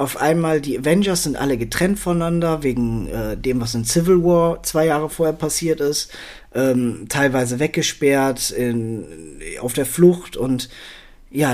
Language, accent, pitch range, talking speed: German, German, 115-150 Hz, 145 wpm